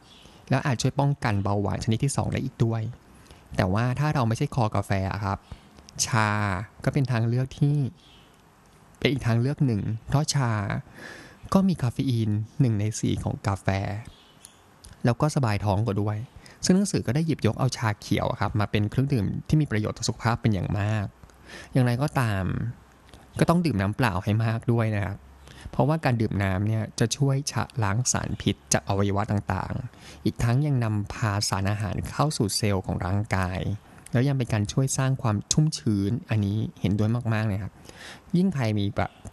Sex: male